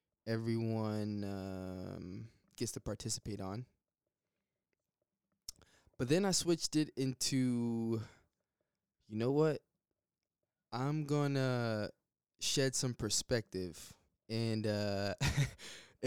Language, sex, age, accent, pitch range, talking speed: English, male, 20-39, American, 105-135 Hz, 85 wpm